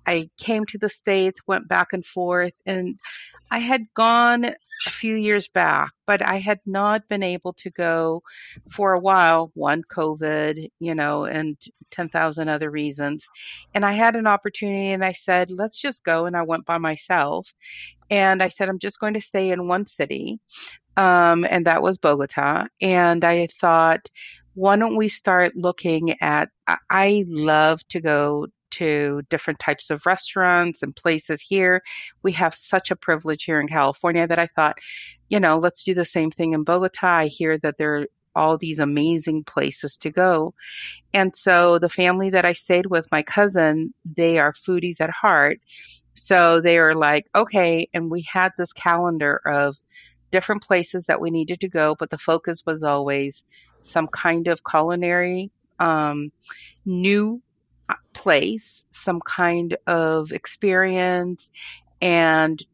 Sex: female